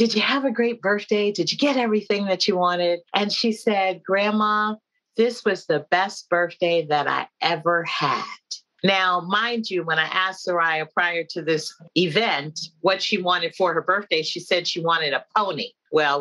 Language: English